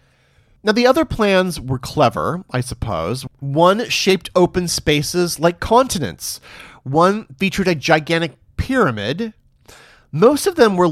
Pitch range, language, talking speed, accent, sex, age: 130-190 Hz, English, 125 wpm, American, male, 40-59